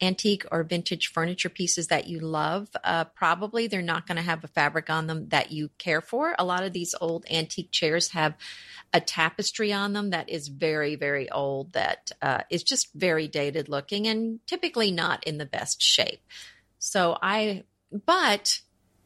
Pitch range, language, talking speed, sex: 155-195 Hz, English, 180 wpm, female